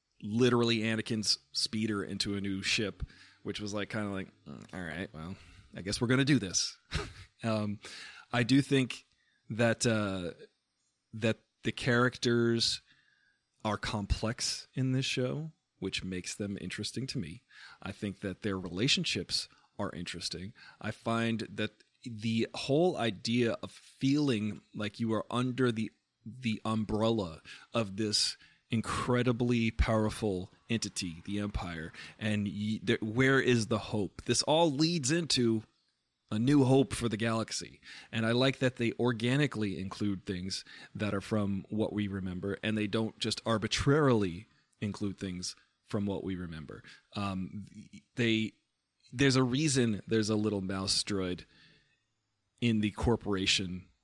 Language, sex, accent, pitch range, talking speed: English, male, American, 100-120 Hz, 140 wpm